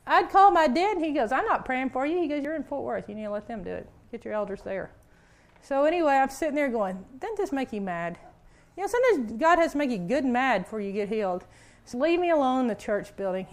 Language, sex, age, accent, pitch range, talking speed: English, female, 40-59, American, 200-275 Hz, 285 wpm